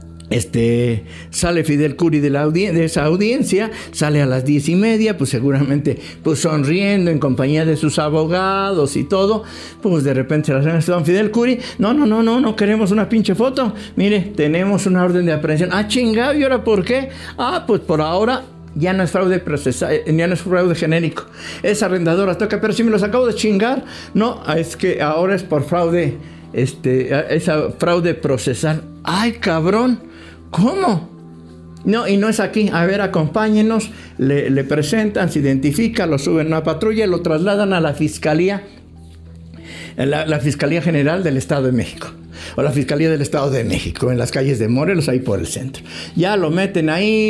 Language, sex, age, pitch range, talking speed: English, male, 60-79, 135-195 Hz, 185 wpm